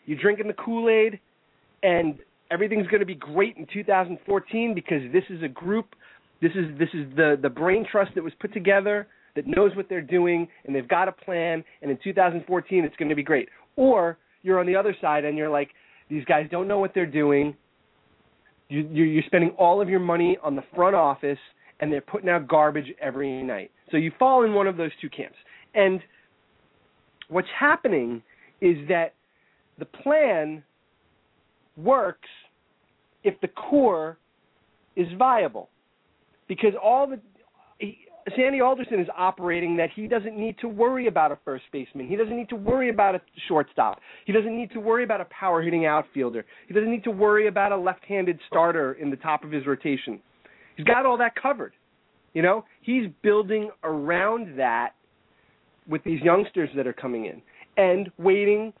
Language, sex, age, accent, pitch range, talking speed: English, male, 30-49, American, 155-215 Hz, 180 wpm